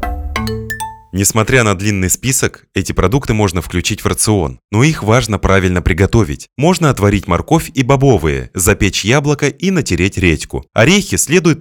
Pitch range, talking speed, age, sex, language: 95-140 Hz, 140 wpm, 20-39, male, Russian